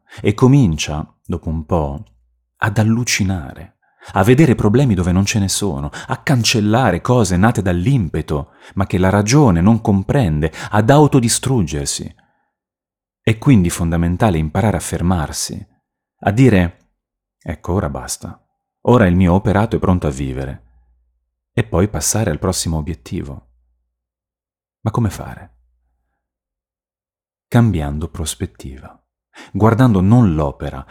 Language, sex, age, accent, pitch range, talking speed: Italian, male, 30-49, native, 80-110 Hz, 120 wpm